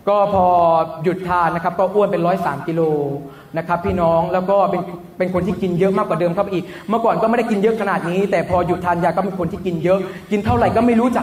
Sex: male